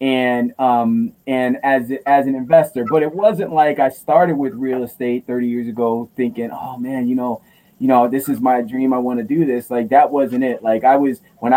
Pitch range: 115-135 Hz